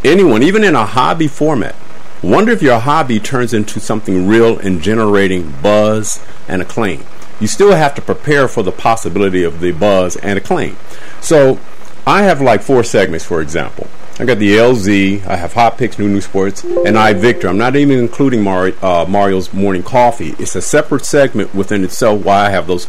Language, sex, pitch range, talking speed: English, male, 100-145 Hz, 190 wpm